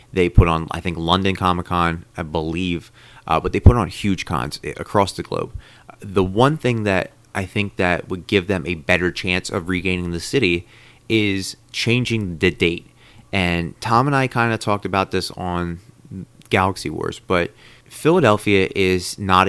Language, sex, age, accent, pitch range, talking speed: English, male, 30-49, American, 90-115 Hz, 170 wpm